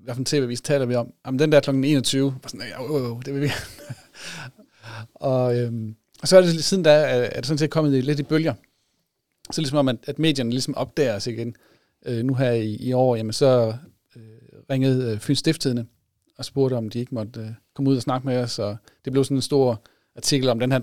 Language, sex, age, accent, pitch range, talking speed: Danish, male, 40-59, native, 115-145 Hz, 235 wpm